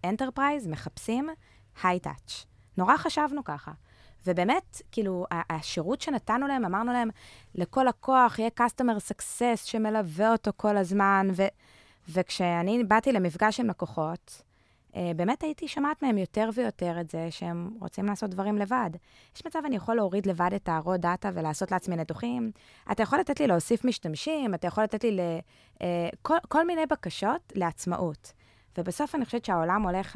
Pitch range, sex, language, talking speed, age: 175-230 Hz, female, Hebrew, 145 wpm, 20-39